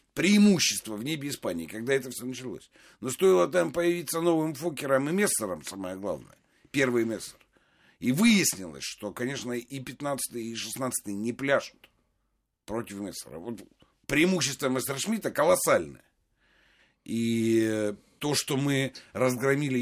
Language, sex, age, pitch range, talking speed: Russian, male, 60-79, 110-140 Hz, 125 wpm